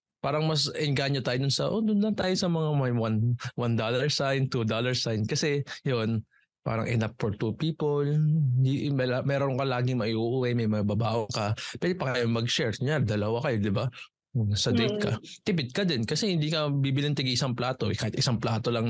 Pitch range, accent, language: 115-145 Hz, native, Filipino